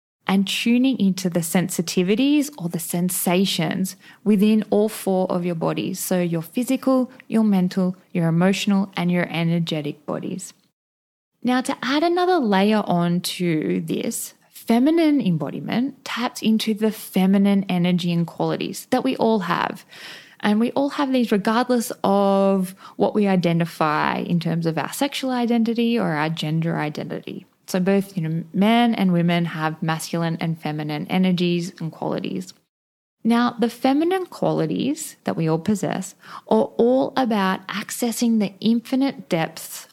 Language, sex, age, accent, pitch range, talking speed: English, female, 10-29, Australian, 175-235 Hz, 145 wpm